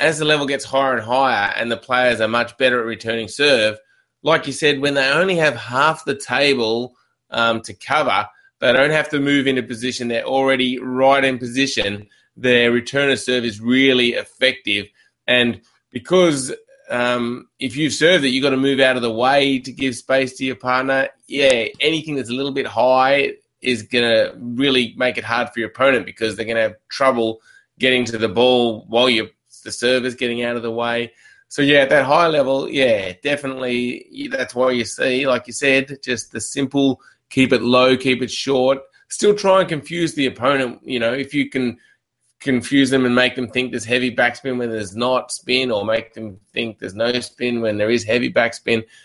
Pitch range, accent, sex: 120-135 Hz, Australian, male